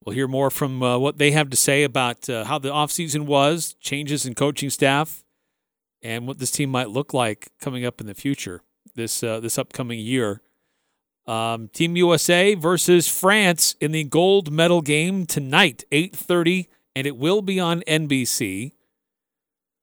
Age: 40-59